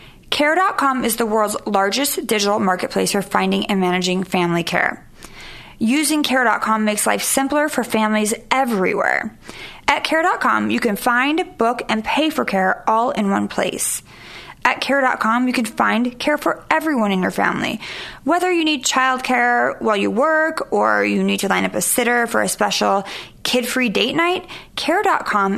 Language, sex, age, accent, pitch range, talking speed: English, female, 30-49, American, 210-285 Hz, 160 wpm